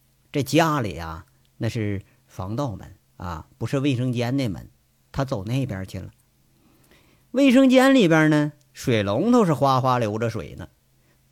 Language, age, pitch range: Chinese, 50-69, 120-190 Hz